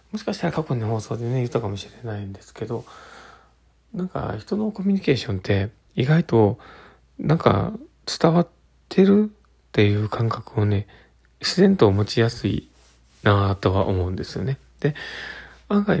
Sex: male